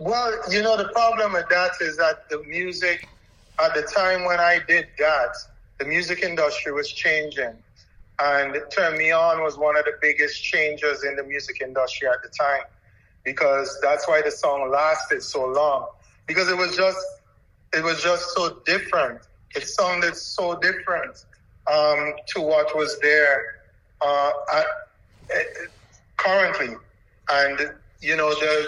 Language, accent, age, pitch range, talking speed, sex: English, American, 30-49, 140-180 Hz, 155 wpm, male